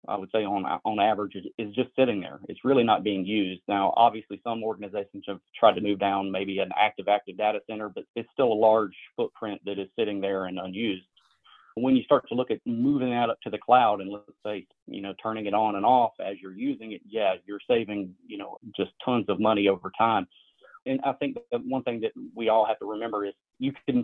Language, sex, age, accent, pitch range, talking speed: English, male, 30-49, American, 100-120 Hz, 235 wpm